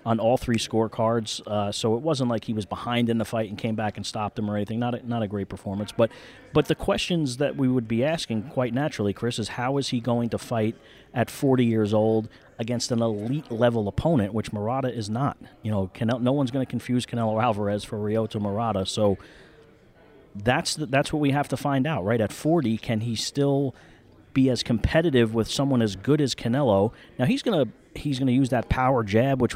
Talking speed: 225 wpm